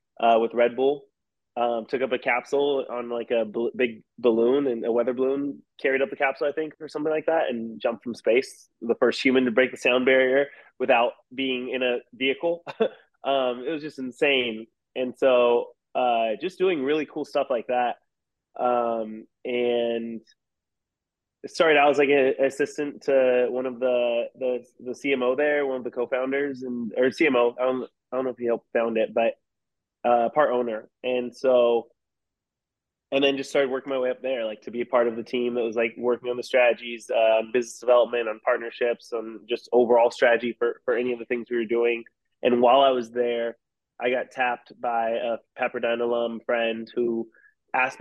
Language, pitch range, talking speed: English, 120-135 Hz, 200 wpm